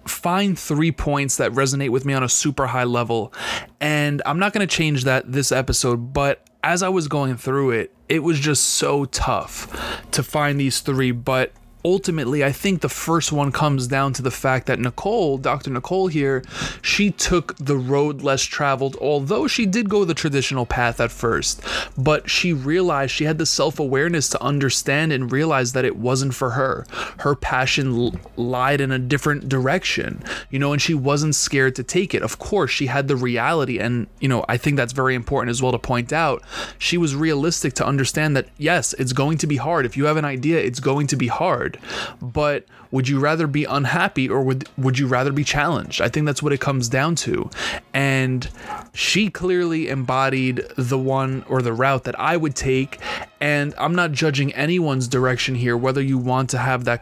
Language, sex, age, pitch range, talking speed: English, male, 20-39, 130-155 Hz, 200 wpm